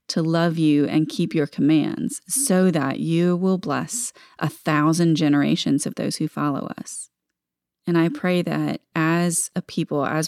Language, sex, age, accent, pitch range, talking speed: English, female, 30-49, American, 155-190 Hz, 165 wpm